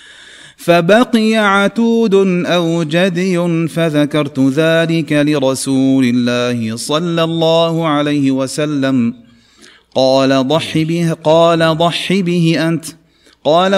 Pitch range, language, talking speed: 160-175 Hz, Arabic, 85 wpm